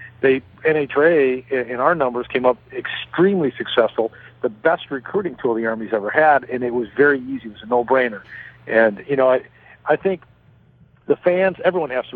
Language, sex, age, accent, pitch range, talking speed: English, male, 50-69, American, 120-155 Hz, 185 wpm